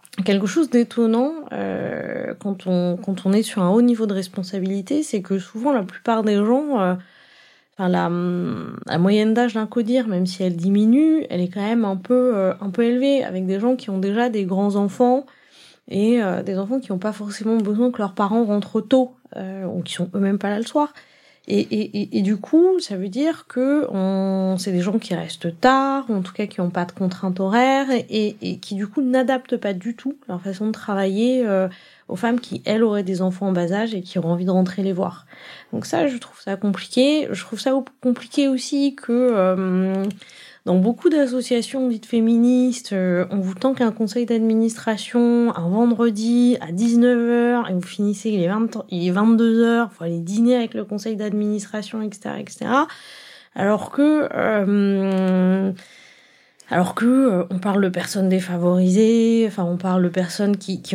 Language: French